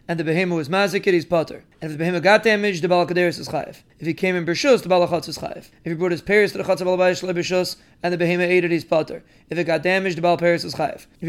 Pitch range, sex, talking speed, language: 175-195 Hz, male, 270 wpm, English